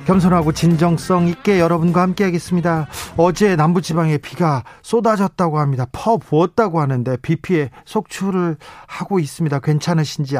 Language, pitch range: Korean, 140-180 Hz